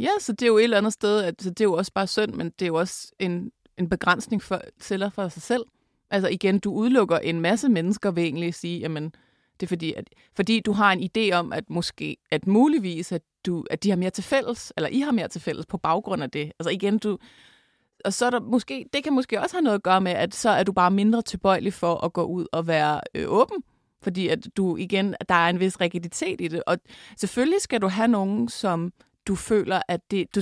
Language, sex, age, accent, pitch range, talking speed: Danish, female, 30-49, native, 175-225 Hz, 255 wpm